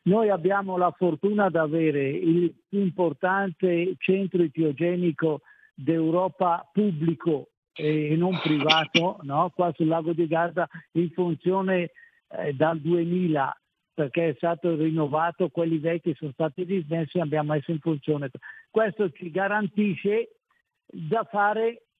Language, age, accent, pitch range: Italian, 60-79, native, 165-205 Hz